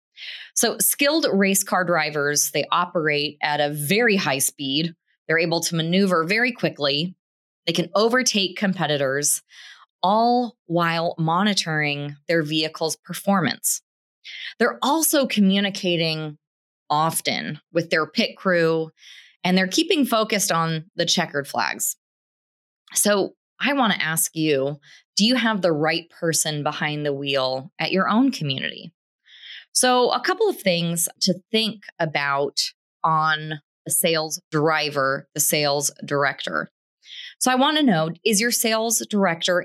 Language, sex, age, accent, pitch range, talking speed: English, female, 20-39, American, 155-205 Hz, 130 wpm